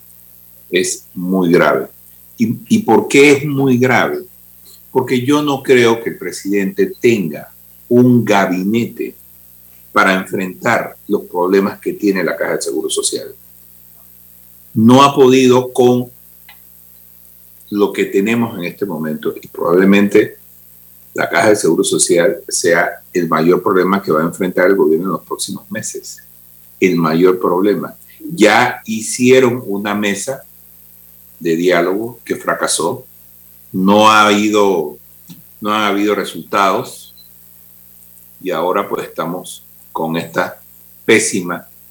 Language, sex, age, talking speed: Spanish, male, 50-69, 125 wpm